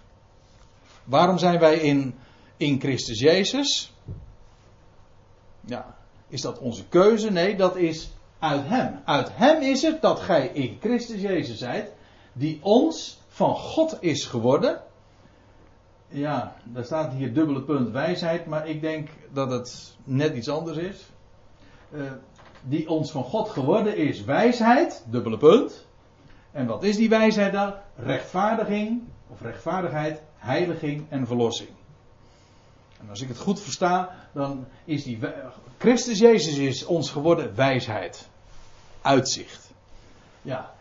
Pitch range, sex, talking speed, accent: 115-170 Hz, male, 130 wpm, Dutch